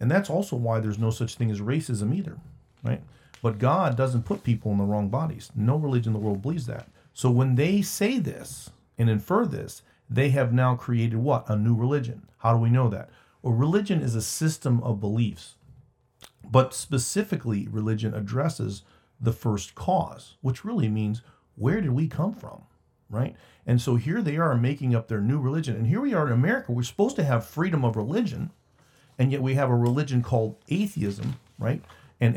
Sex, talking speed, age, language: male, 195 wpm, 40-59, English